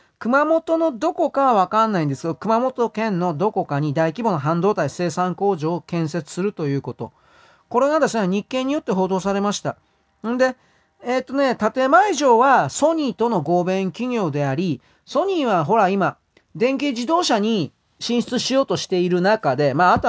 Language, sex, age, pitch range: Japanese, male, 40-59, 165-255 Hz